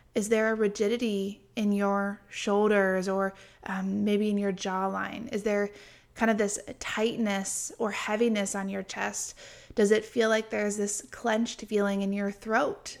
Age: 20-39